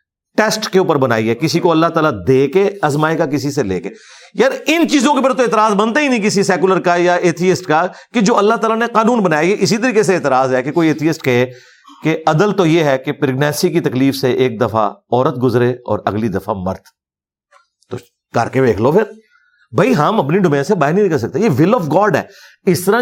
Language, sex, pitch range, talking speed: Urdu, male, 145-210 Hz, 205 wpm